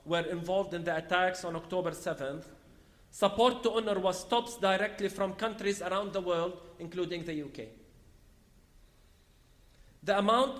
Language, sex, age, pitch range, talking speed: English, male, 40-59, 155-215 Hz, 135 wpm